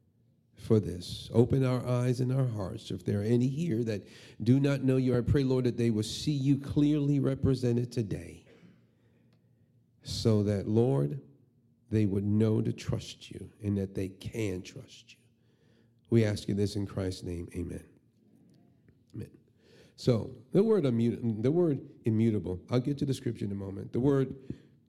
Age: 50-69